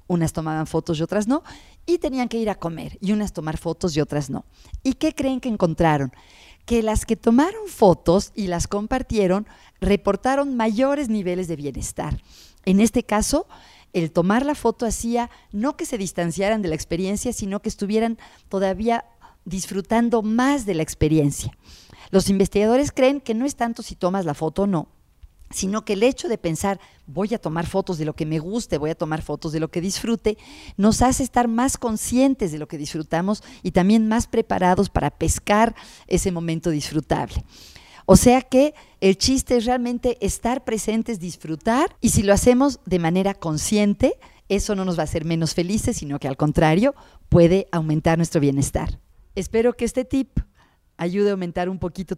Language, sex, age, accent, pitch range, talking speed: Spanish, female, 40-59, Mexican, 165-235 Hz, 180 wpm